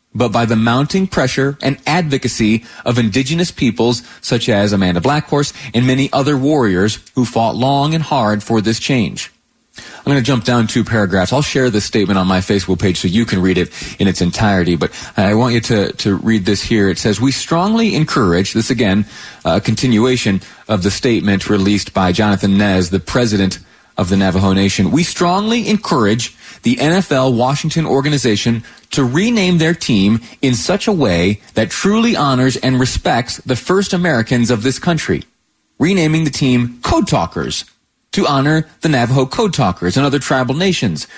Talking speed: 175 wpm